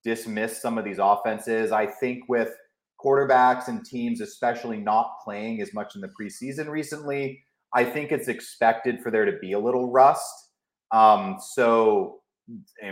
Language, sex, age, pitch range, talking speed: English, male, 30-49, 110-150 Hz, 160 wpm